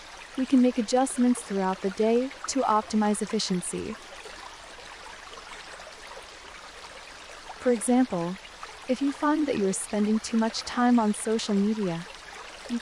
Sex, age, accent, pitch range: female, 20-39, American, 205-255 Hz